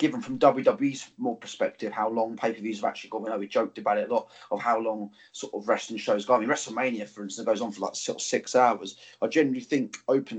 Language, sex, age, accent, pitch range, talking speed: English, male, 20-39, British, 110-125 Hz, 255 wpm